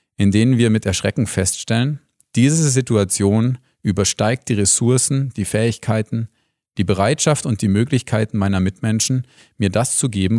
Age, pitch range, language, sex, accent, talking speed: 40-59, 100-125 Hz, German, male, German, 140 wpm